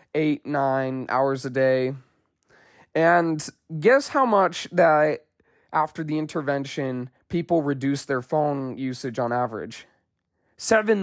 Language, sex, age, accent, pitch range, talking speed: English, male, 20-39, American, 145-190 Hz, 115 wpm